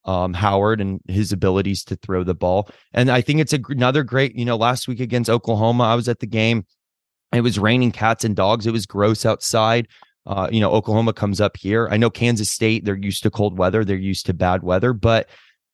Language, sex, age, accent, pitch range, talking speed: English, male, 20-39, American, 100-120 Hz, 225 wpm